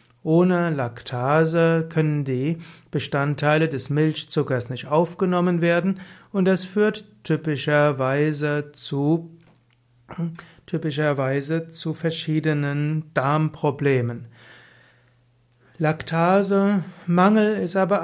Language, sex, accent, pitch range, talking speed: German, male, German, 140-175 Hz, 75 wpm